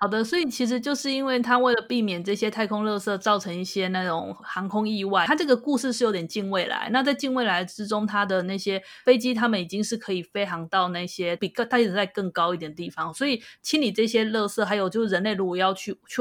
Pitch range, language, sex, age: 185-250 Hz, Chinese, female, 20-39